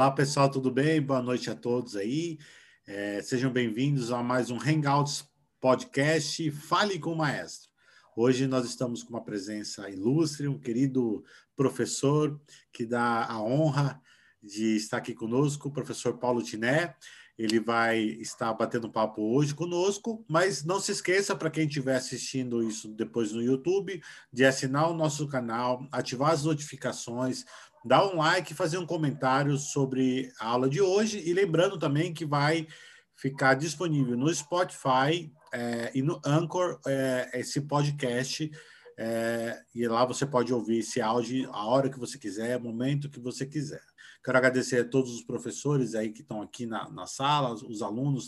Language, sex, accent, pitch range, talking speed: Portuguese, male, Brazilian, 120-150 Hz, 160 wpm